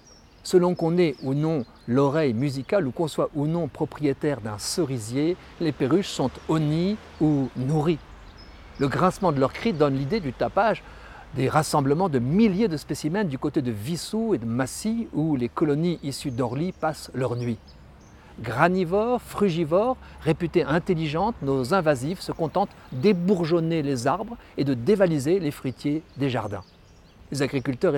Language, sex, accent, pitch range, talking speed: French, male, French, 135-180 Hz, 150 wpm